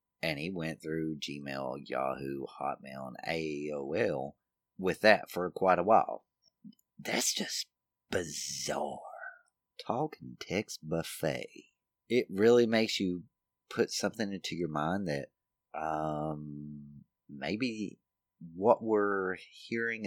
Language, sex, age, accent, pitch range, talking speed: English, male, 30-49, American, 75-95 Hz, 110 wpm